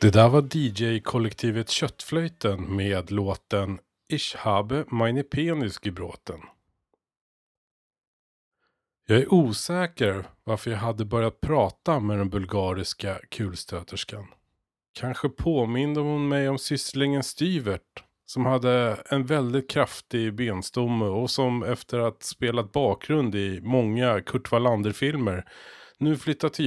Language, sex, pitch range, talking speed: Swedish, male, 105-135 Hz, 115 wpm